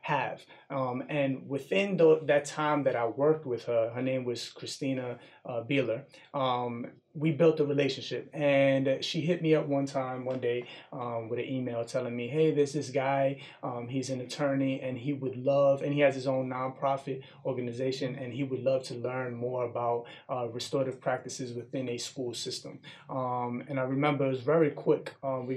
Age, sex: 30-49, male